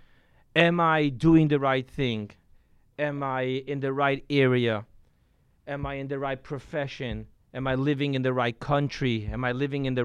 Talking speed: 180 wpm